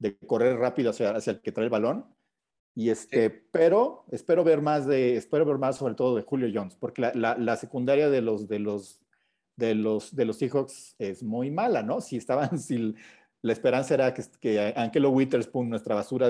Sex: male